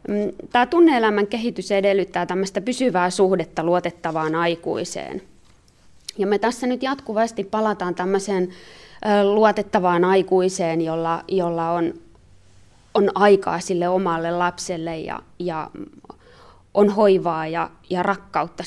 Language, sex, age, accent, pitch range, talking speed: Finnish, female, 20-39, native, 170-215 Hz, 105 wpm